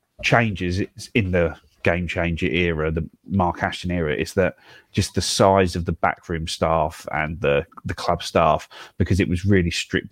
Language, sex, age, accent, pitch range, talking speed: English, male, 30-49, British, 85-100 Hz, 170 wpm